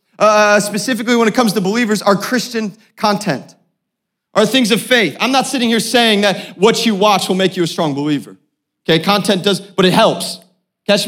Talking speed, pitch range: 195 wpm, 215-275 Hz